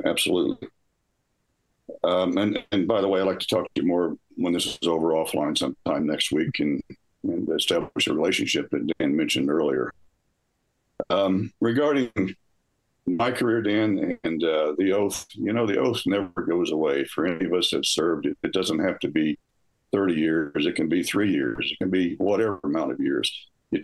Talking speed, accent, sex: 185 wpm, American, male